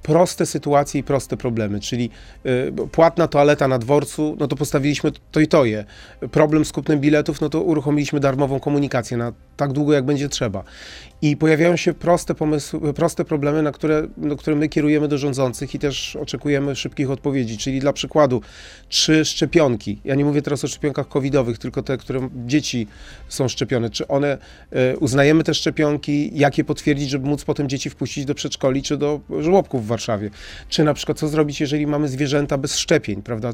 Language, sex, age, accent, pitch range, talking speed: Polish, male, 30-49, native, 130-150 Hz, 180 wpm